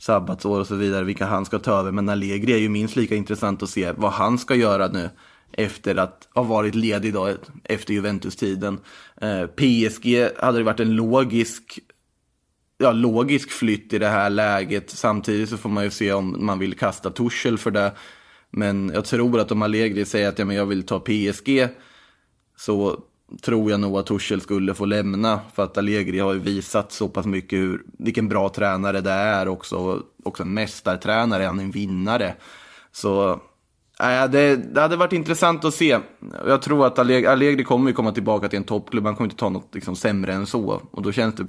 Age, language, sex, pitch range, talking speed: 20-39, Swedish, male, 100-120 Hz, 200 wpm